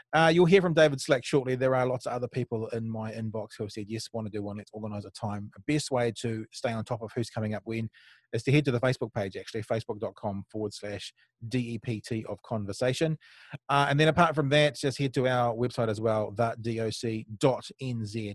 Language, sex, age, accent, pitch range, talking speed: English, male, 30-49, Australian, 110-130 Hz, 220 wpm